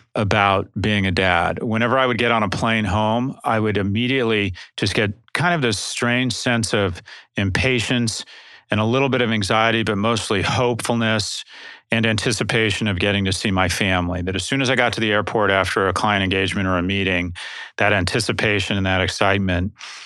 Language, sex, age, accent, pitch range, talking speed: English, male, 40-59, American, 100-120 Hz, 185 wpm